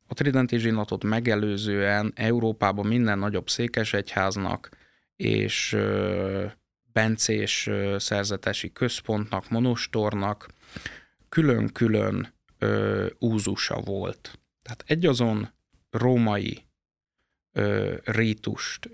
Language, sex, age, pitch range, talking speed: Hungarian, male, 20-39, 105-120 Hz, 65 wpm